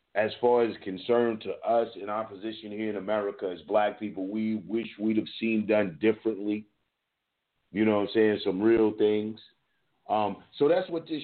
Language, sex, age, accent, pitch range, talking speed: English, male, 40-59, American, 100-120 Hz, 185 wpm